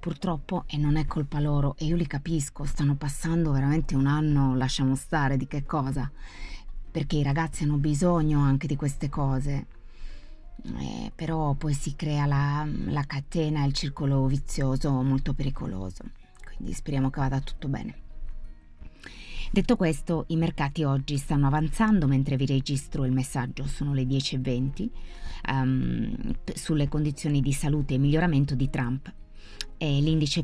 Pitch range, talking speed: 130-150 Hz, 145 wpm